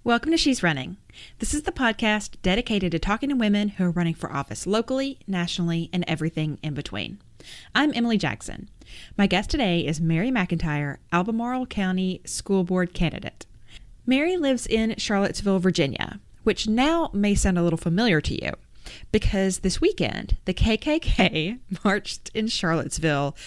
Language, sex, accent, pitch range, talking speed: English, female, American, 160-225 Hz, 155 wpm